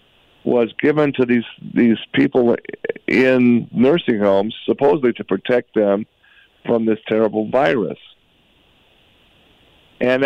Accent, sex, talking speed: American, male, 105 wpm